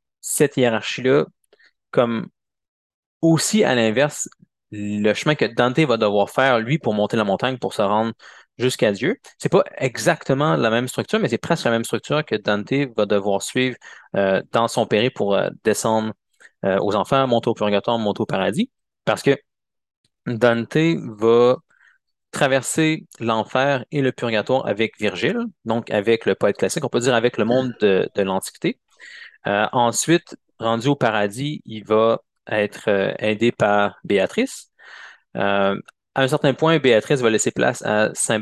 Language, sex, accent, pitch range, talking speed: French, male, Canadian, 105-140 Hz, 160 wpm